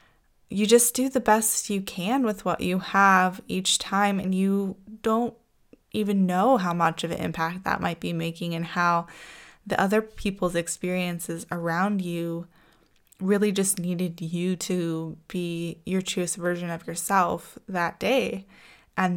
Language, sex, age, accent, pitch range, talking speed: English, female, 10-29, American, 170-195 Hz, 155 wpm